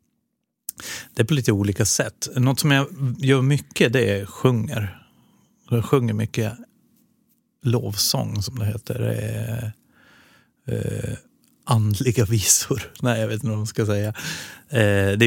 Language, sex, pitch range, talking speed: Swedish, male, 105-125 Hz, 130 wpm